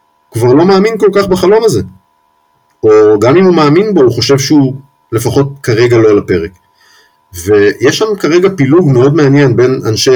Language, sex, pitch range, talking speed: Hebrew, male, 105-150 Hz, 170 wpm